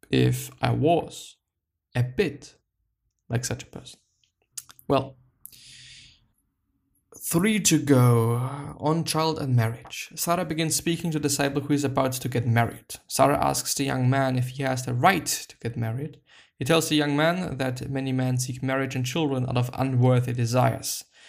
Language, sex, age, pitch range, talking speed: English, male, 20-39, 125-150 Hz, 165 wpm